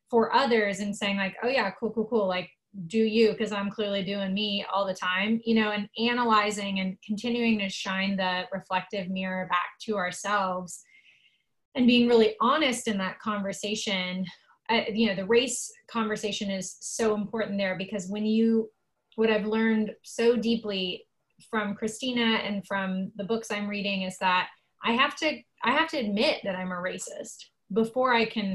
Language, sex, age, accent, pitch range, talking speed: English, female, 20-39, American, 190-220 Hz, 175 wpm